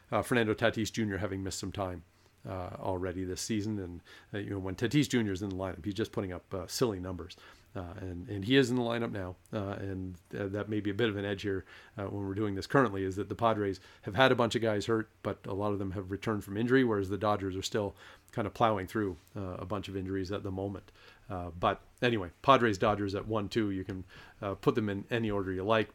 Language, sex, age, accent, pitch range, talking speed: English, male, 40-59, American, 100-130 Hz, 255 wpm